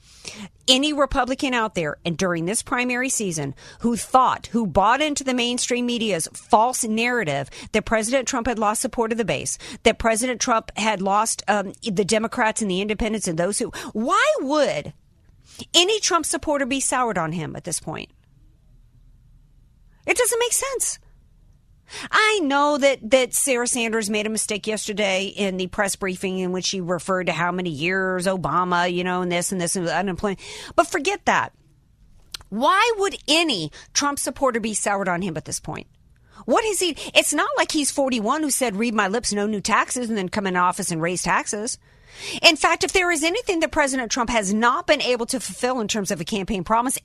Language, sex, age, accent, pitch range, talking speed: English, female, 50-69, American, 190-275 Hz, 190 wpm